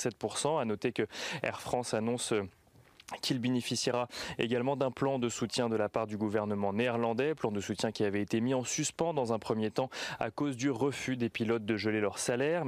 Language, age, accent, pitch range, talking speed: French, 20-39, French, 115-135 Hz, 200 wpm